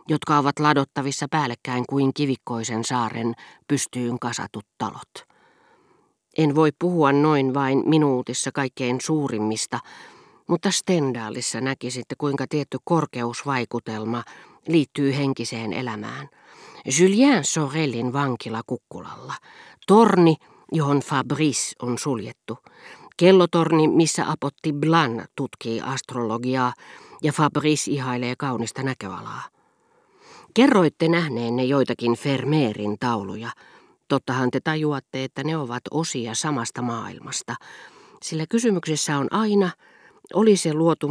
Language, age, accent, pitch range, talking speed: Finnish, 40-59, native, 120-160 Hz, 100 wpm